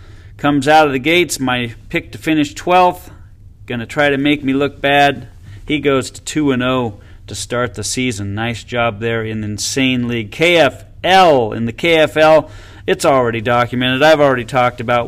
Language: English